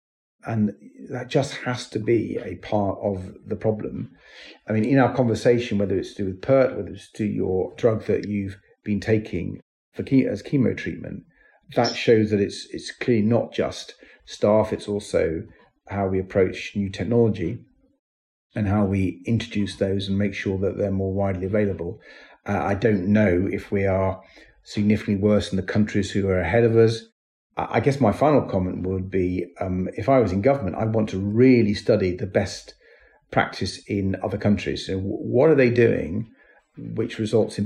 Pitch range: 95-115 Hz